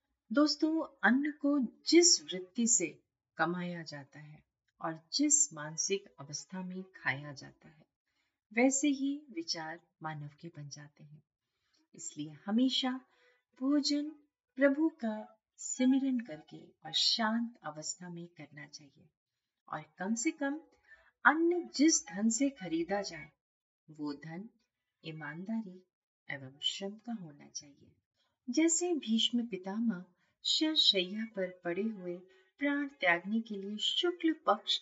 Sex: female